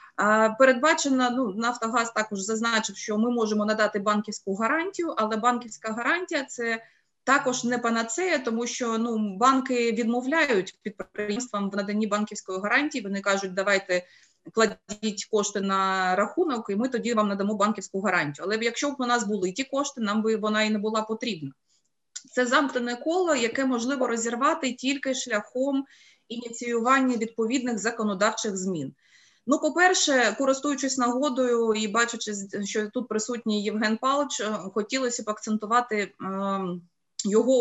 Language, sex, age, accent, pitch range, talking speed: Ukrainian, female, 20-39, native, 210-250 Hz, 135 wpm